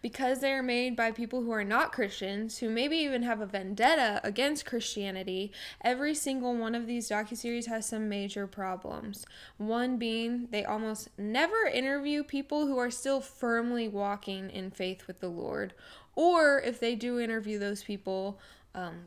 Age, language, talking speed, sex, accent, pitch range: 10-29, English, 165 wpm, female, American, 200-245 Hz